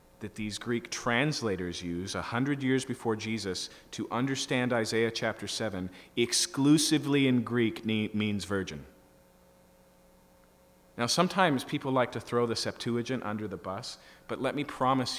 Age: 40-59